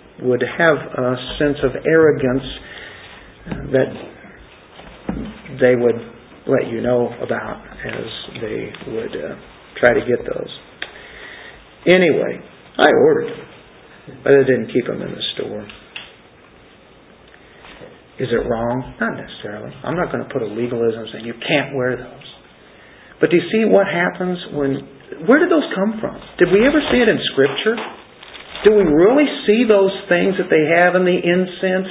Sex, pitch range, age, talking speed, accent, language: male, 130-210 Hz, 50-69, 150 wpm, American, English